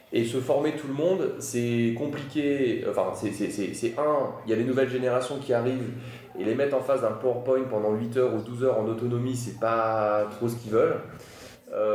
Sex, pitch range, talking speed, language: male, 110-130 Hz, 215 wpm, French